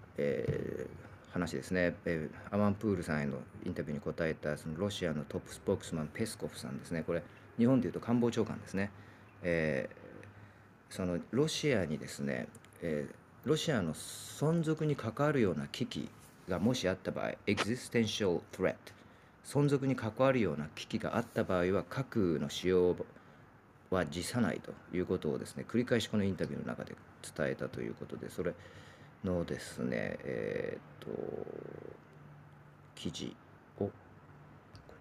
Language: Japanese